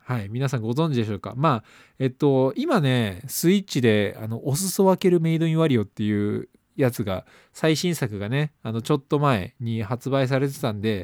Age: 20-39